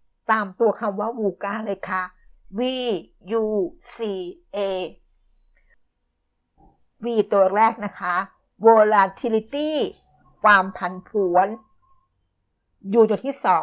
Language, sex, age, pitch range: Thai, female, 60-79, 190-240 Hz